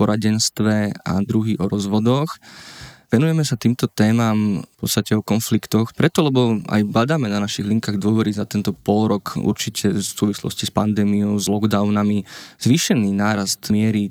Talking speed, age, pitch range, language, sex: 145 wpm, 20-39, 105-120 Hz, Slovak, male